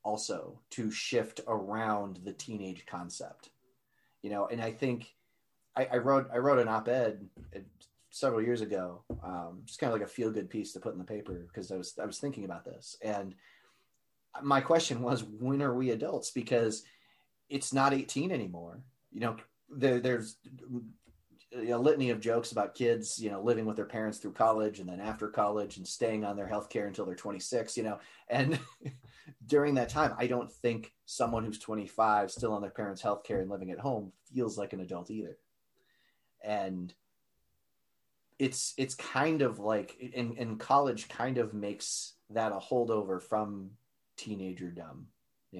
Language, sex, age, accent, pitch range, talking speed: English, male, 30-49, American, 100-125 Hz, 175 wpm